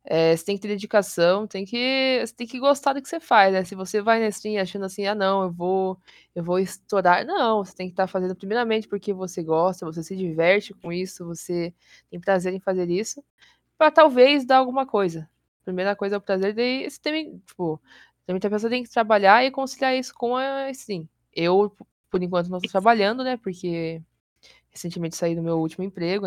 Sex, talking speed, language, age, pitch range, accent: female, 210 wpm, Portuguese, 20-39, 175-225 Hz, Brazilian